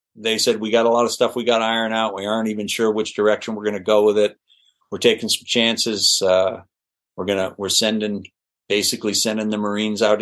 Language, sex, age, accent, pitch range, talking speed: English, male, 50-69, American, 100-115 Hz, 230 wpm